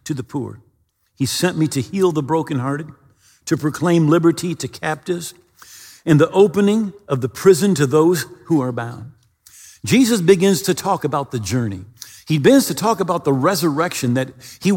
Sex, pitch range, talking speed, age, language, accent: male, 135-190 Hz, 170 wpm, 50-69, English, American